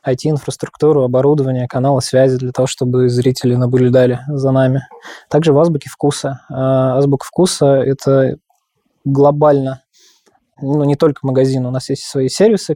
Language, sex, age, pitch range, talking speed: Russian, male, 20-39, 130-145 Hz, 130 wpm